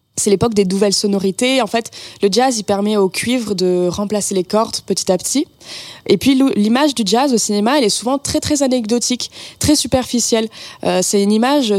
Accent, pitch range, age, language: French, 185-235 Hz, 20-39, French